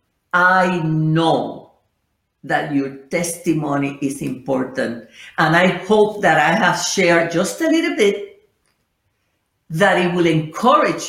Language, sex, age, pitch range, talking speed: English, female, 50-69, 155-215 Hz, 120 wpm